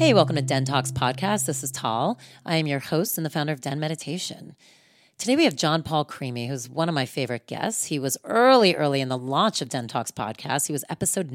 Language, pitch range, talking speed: English, 130-175 Hz, 235 wpm